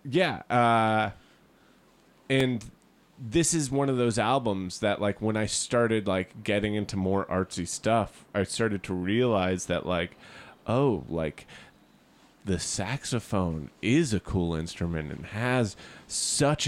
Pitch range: 95-115 Hz